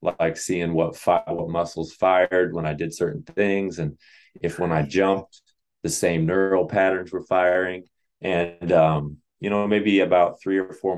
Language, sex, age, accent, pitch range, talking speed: English, male, 20-39, American, 80-95 Hz, 170 wpm